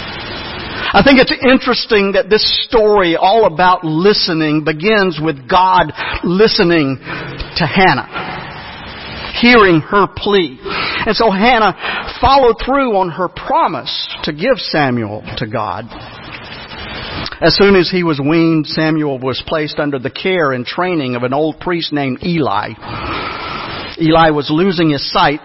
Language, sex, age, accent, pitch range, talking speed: English, male, 50-69, American, 140-185 Hz, 135 wpm